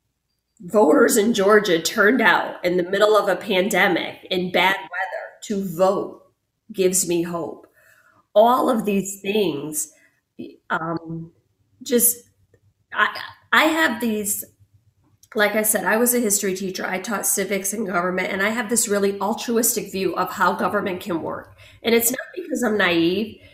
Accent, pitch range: American, 175-225 Hz